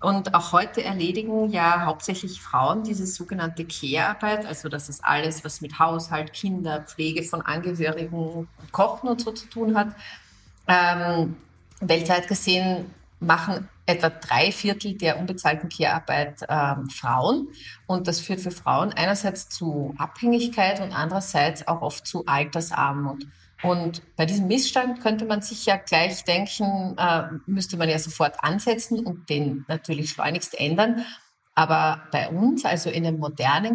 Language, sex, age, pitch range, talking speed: German, female, 30-49, 160-200 Hz, 140 wpm